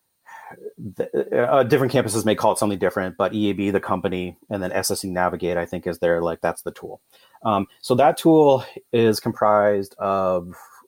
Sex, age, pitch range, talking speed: male, 30-49, 90-110 Hz, 175 wpm